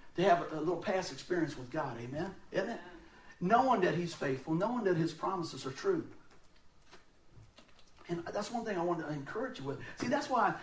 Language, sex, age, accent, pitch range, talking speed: English, male, 50-69, American, 175-275 Hz, 200 wpm